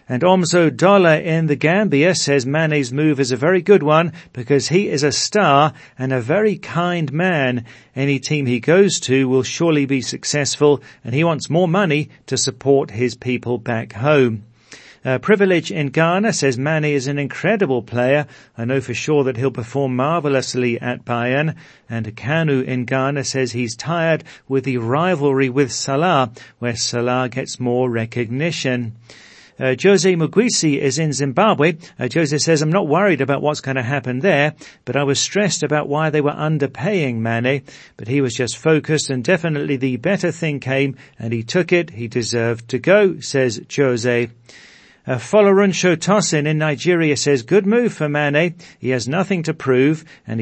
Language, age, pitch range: English, 40-59, 125-160 Hz